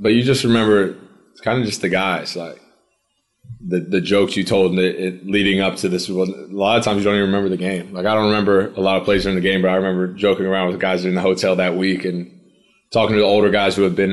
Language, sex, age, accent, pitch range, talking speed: English, male, 20-39, American, 90-100 Hz, 270 wpm